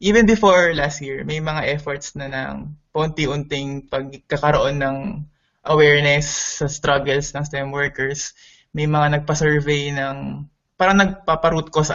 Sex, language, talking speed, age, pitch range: male, Filipino, 135 wpm, 20-39, 140-165 Hz